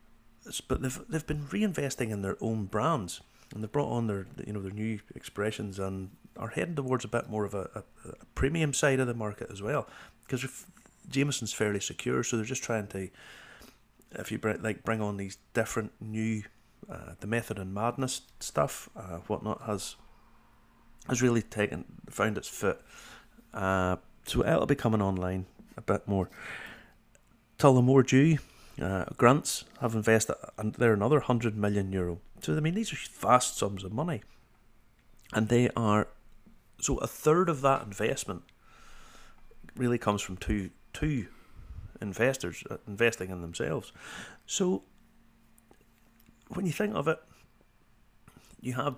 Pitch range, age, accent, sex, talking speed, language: 105-125 Hz, 30-49, British, male, 160 wpm, English